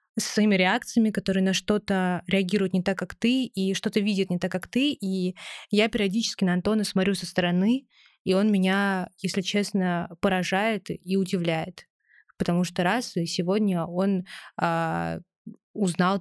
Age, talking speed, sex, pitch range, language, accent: 20-39, 150 wpm, female, 180-205 Hz, Russian, native